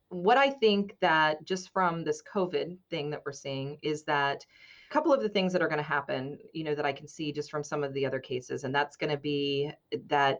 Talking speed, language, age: 250 wpm, English, 30-49